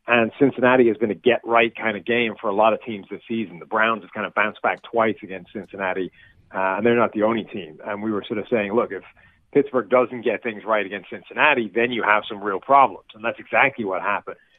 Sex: male